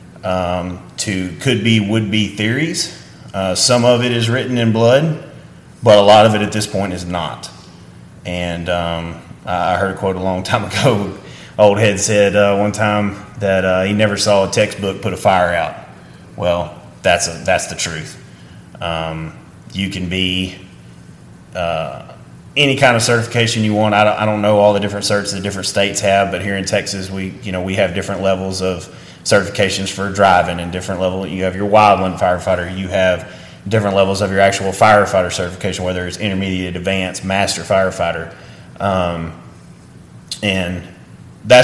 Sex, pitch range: male, 90-105 Hz